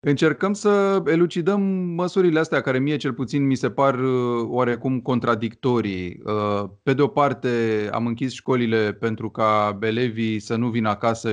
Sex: male